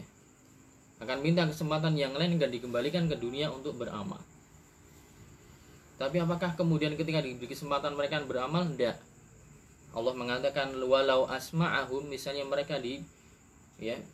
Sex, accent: male, native